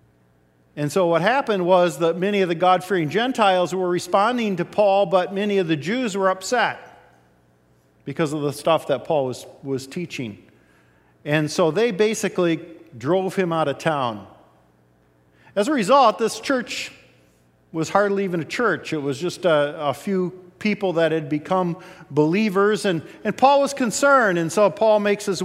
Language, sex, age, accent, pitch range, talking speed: English, male, 50-69, American, 150-200 Hz, 165 wpm